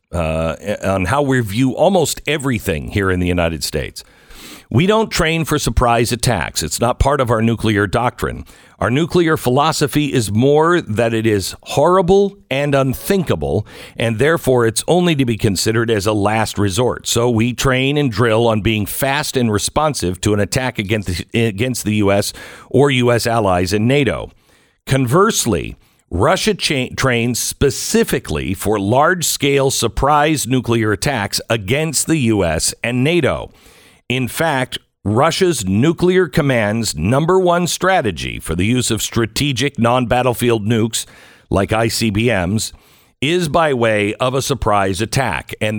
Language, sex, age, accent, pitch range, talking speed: English, male, 50-69, American, 105-140 Hz, 145 wpm